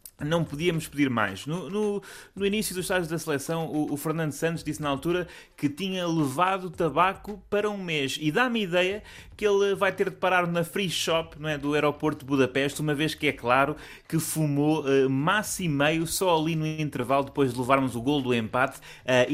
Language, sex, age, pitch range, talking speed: Portuguese, male, 20-39, 120-180 Hz, 210 wpm